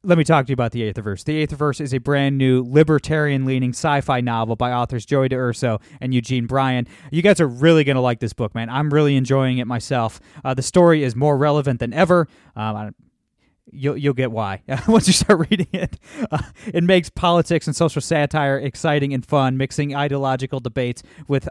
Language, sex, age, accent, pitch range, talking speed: English, male, 20-39, American, 125-150 Hz, 210 wpm